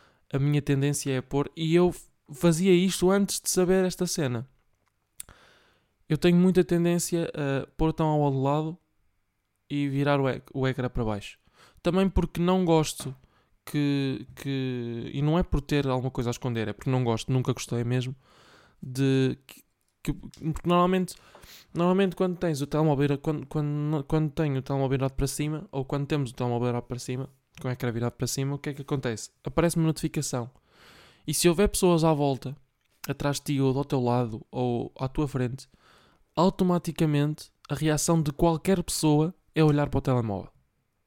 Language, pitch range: Portuguese, 130-160 Hz